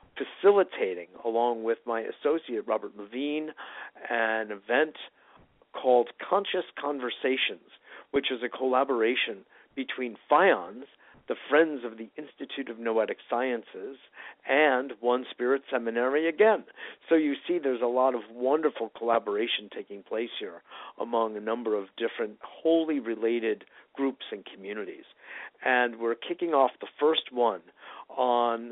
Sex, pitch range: male, 115-145 Hz